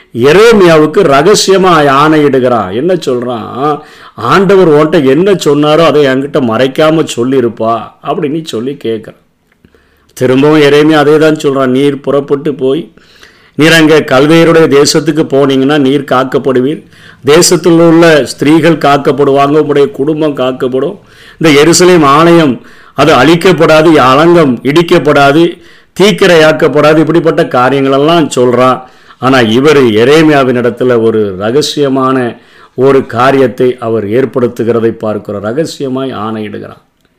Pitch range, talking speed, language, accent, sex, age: 130-160 Hz, 100 wpm, Tamil, native, male, 50-69